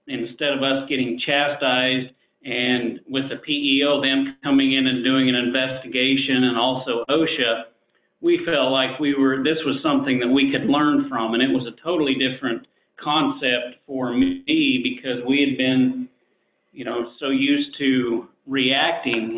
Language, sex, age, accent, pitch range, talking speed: English, male, 40-59, American, 130-145 Hz, 160 wpm